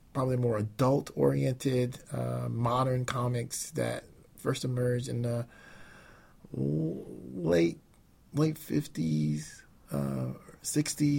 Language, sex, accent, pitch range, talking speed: English, male, American, 115-135 Hz, 70 wpm